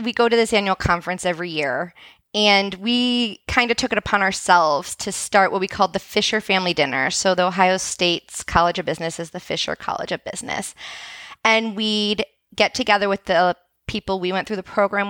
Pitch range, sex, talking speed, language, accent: 185-230 Hz, female, 200 wpm, English, American